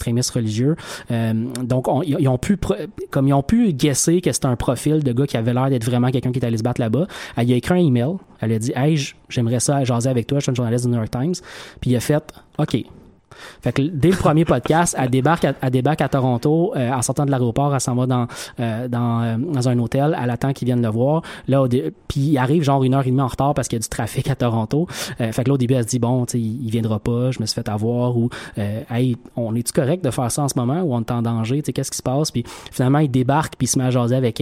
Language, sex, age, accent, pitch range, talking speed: French, male, 20-39, Canadian, 120-140 Hz, 290 wpm